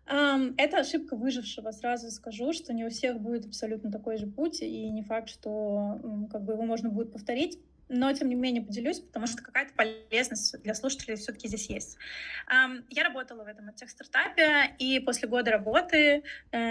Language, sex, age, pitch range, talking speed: Russian, female, 20-39, 225-275 Hz, 170 wpm